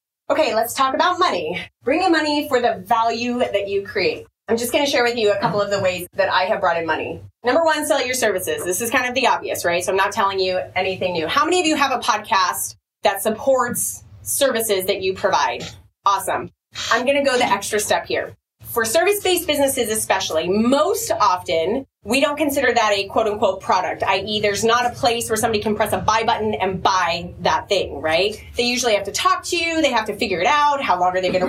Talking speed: 230 wpm